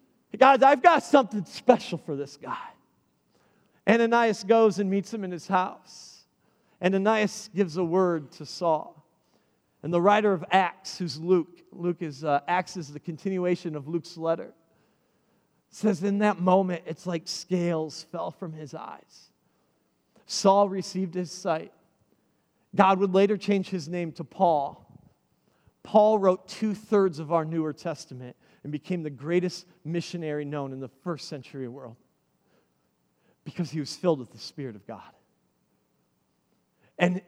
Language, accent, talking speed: English, American, 145 wpm